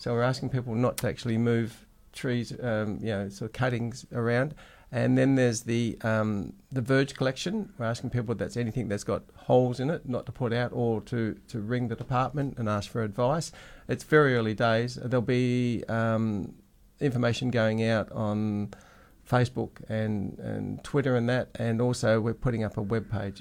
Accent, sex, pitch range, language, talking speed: Australian, male, 105-125 Hz, English, 190 wpm